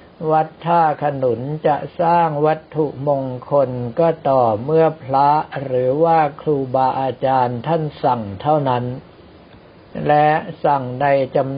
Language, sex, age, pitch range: Thai, male, 60-79, 130-155 Hz